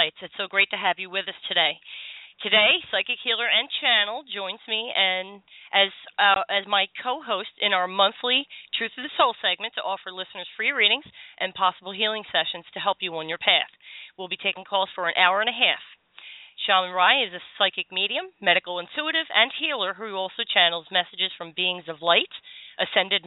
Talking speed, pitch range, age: 190 wpm, 185-235 Hz, 40-59